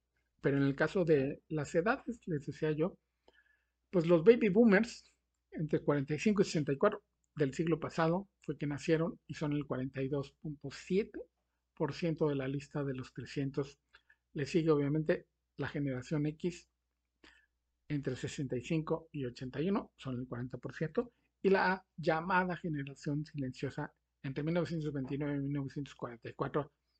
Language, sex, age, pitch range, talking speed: Spanish, male, 50-69, 135-165 Hz, 120 wpm